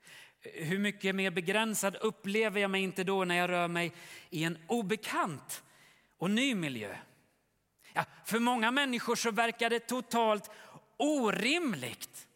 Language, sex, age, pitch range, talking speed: Swedish, male, 30-49, 155-215 Hz, 130 wpm